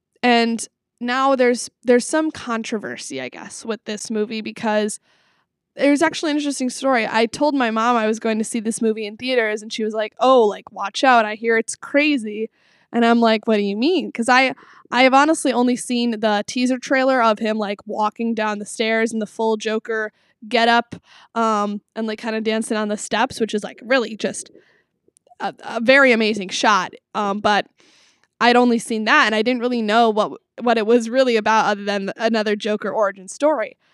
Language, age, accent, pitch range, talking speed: English, 20-39, American, 215-250 Hz, 205 wpm